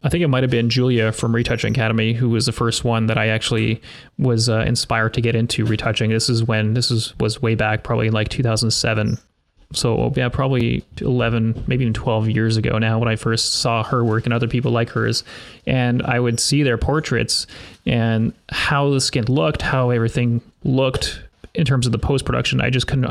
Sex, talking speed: male, 205 wpm